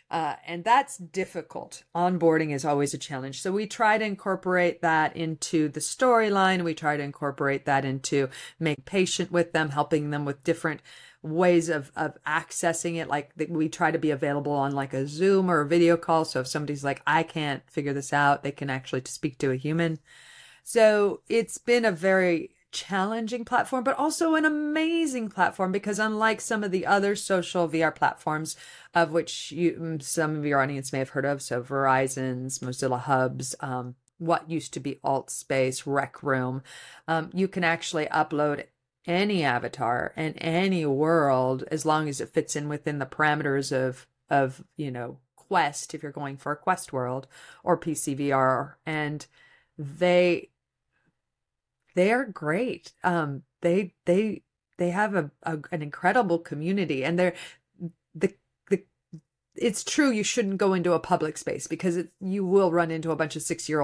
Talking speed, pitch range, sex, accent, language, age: 175 wpm, 140-180 Hz, female, American, English, 40-59